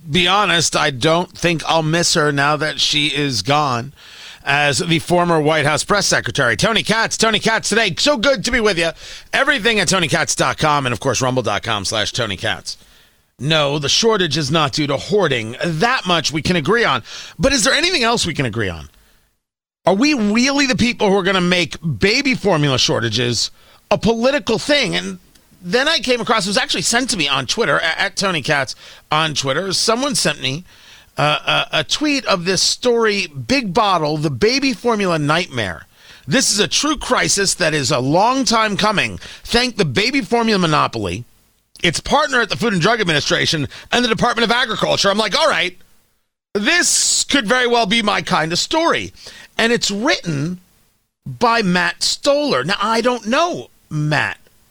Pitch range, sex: 150-235 Hz, male